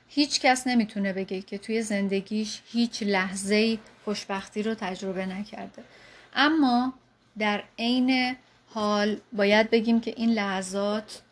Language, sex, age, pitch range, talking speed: Persian, female, 30-49, 200-240 Hz, 115 wpm